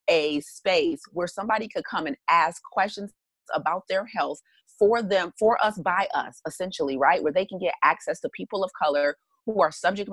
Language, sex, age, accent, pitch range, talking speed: English, female, 30-49, American, 155-205 Hz, 190 wpm